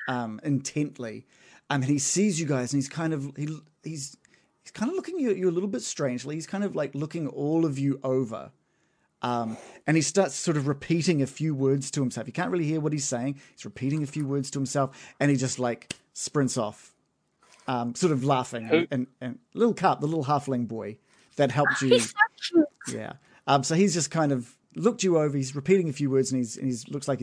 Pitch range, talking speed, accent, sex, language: 125-160 Hz, 225 wpm, Australian, male, English